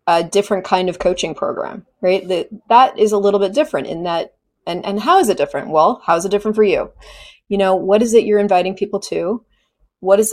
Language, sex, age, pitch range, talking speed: English, female, 30-49, 175-205 Hz, 230 wpm